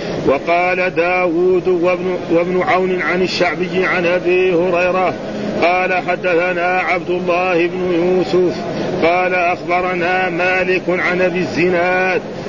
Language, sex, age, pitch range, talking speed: Arabic, male, 40-59, 175-185 Hz, 100 wpm